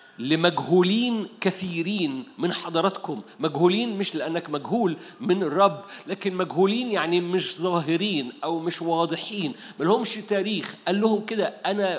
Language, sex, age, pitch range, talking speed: Arabic, male, 50-69, 175-230 Hz, 120 wpm